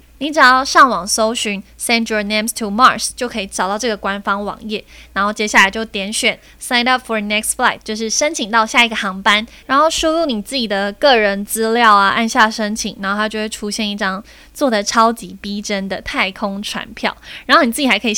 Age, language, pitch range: 20-39, Chinese, 200-240 Hz